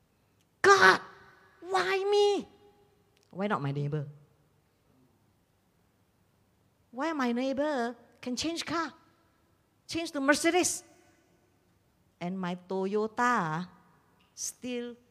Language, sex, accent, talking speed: English, female, Malaysian, 80 wpm